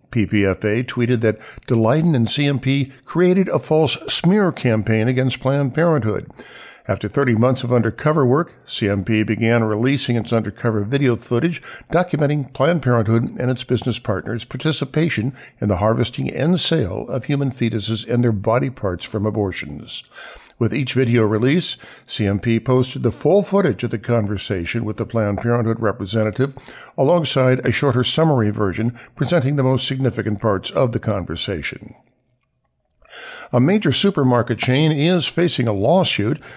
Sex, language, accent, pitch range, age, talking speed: male, English, American, 115-145 Hz, 50-69, 145 wpm